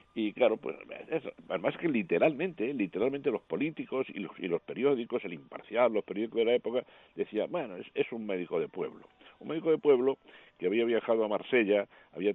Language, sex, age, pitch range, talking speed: Spanish, male, 60-79, 100-130 Hz, 190 wpm